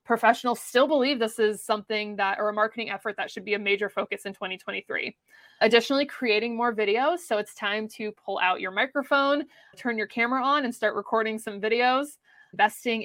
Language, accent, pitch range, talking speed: English, American, 210-245 Hz, 190 wpm